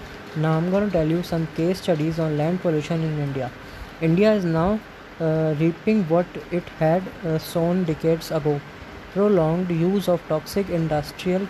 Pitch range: 155-180 Hz